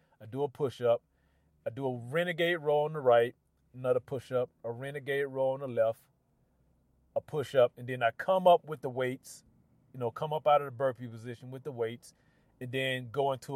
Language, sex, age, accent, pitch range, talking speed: English, male, 30-49, American, 135-180 Hz, 215 wpm